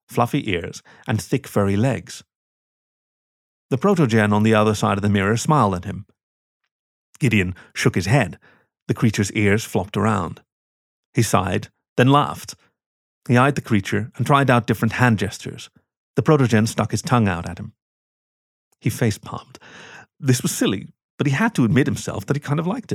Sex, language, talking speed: male, English, 170 wpm